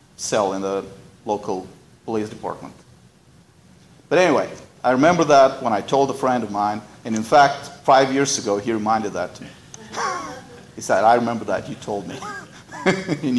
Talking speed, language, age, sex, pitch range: 170 wpm, English, 40-59, male, 115-155 Hz